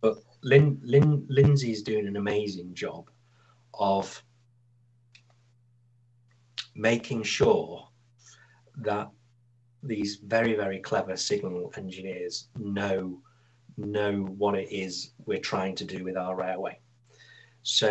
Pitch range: 100-120 Hz